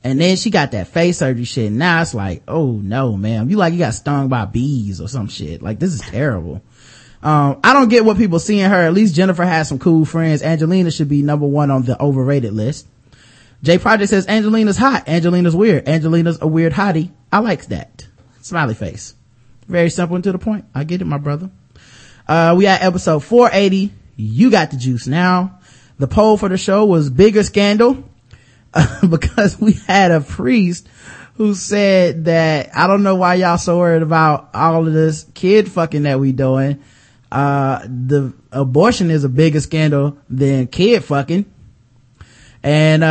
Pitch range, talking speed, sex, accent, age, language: 135-200 Hz, 185 wpm, male, American, 20-39, English